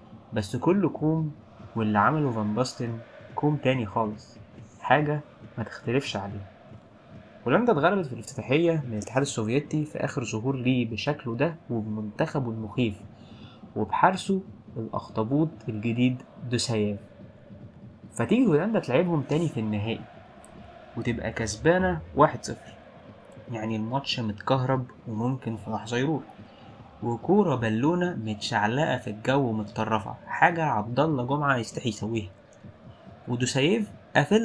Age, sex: 20-39, male